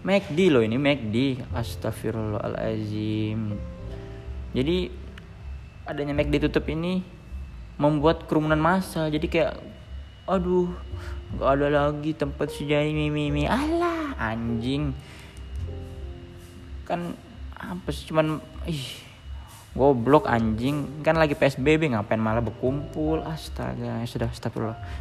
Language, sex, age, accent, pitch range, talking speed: Indonesian, male, 20-39, native, 95-145 Hz, 95 wpm